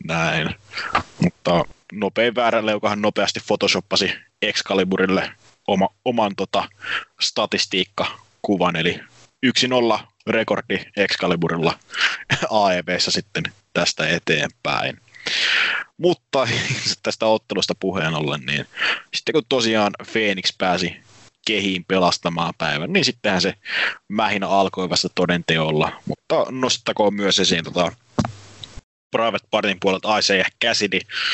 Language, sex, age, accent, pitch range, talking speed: English, male, 20-39, Finnish, 90-110 Hz, 110 wpm